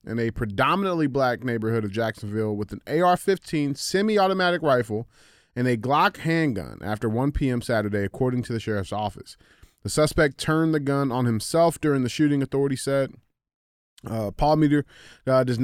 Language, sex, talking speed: English, male, 160 wpm